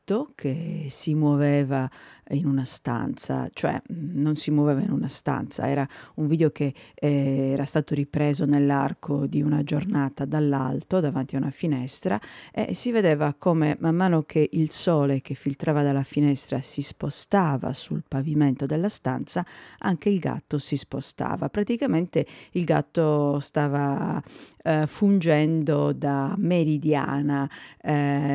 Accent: native